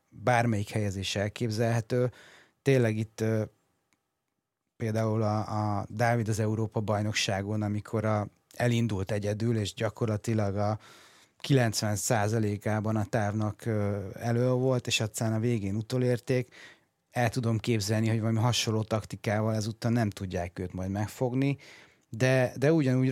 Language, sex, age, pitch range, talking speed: Hungarian, male, 30-49, 105-125 Hz, 120 wpm